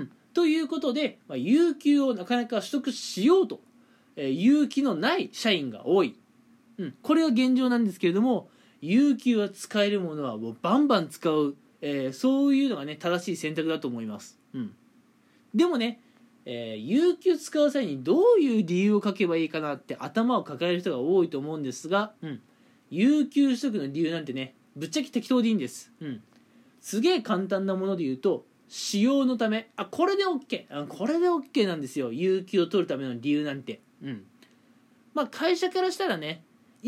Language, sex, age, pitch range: Japanese, male, 20-39, 180-265 Hz